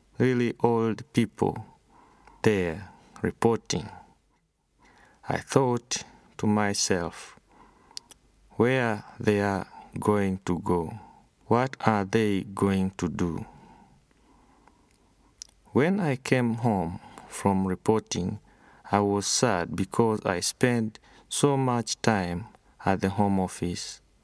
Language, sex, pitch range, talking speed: English, male, 95-115 Hz, 100 wpm